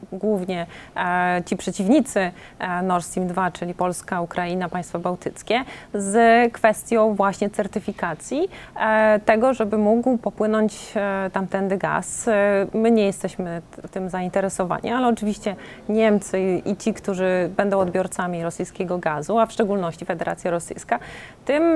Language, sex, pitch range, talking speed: Polish, female, 185-225 Hz, 135 wpm